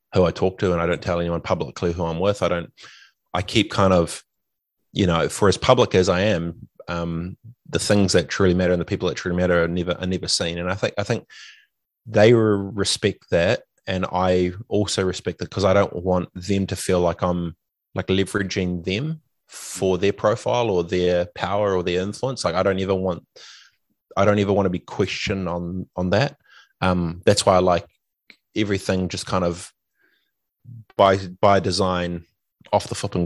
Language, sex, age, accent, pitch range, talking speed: English, male, 20-39, Australian, 90-100 Hz, 195 wpm